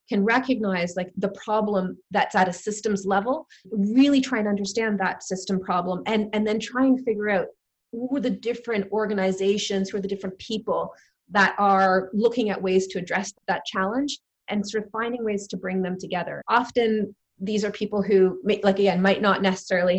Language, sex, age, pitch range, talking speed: English, female, 30-49, 185-215 Hz, 190 wpm